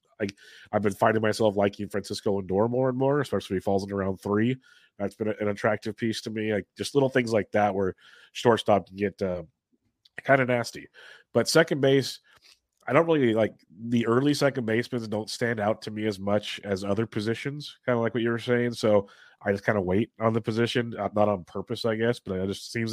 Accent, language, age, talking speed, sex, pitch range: American, English, 30-49, 230 wpm, male, 100-115 Hz